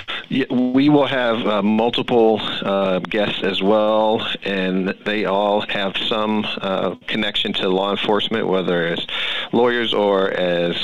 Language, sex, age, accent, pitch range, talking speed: English, male, 40-59, American, 90-105 Hz, 135 wpm